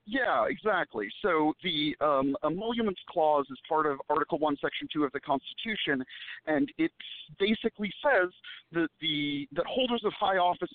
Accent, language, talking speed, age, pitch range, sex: American, English, 155 wpm, 50-69, 150-215 Hz, male